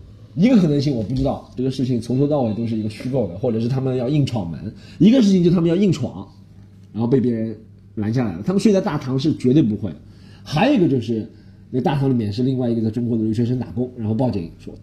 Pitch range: 105-165 Hz